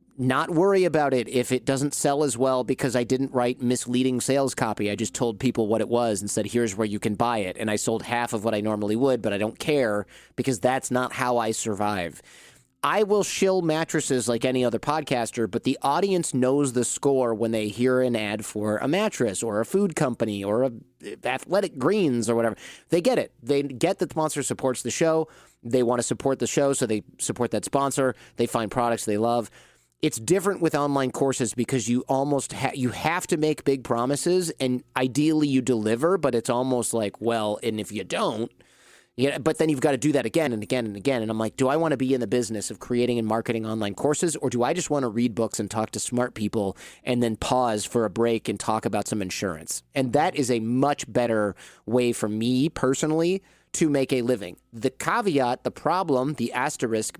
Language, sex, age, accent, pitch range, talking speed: English, male, 30-49, American, 115-140 Hz, 225 wpm